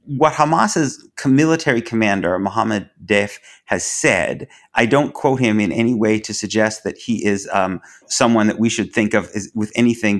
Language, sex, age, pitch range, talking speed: English, male, 30-49, 105-130 Hz, 175 wpm